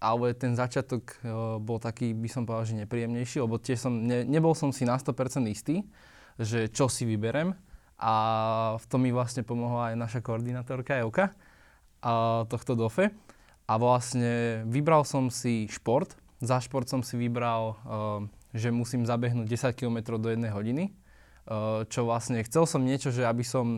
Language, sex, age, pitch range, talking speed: Slovak, male, 20-39, 115-130 Hz, 155 wpm